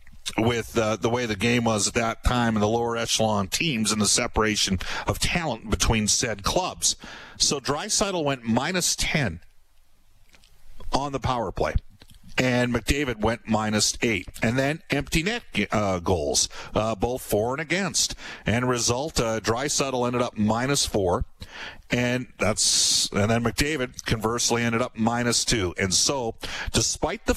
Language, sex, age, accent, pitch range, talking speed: English, male, 50-69, American, 105-130 Hz, 155 wpm